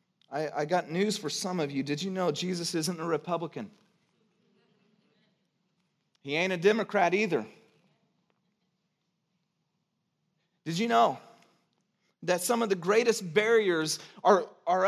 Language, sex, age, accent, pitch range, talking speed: English, male, 30-49, American, 175-215 Hz, 120 wpm